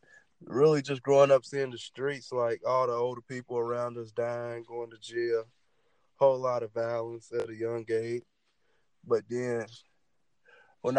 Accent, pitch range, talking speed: American, 115-135 Hz, 165 wpm